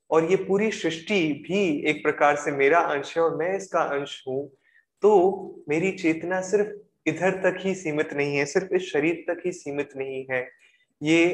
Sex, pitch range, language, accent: male, 135-180 Hz, Hindi, native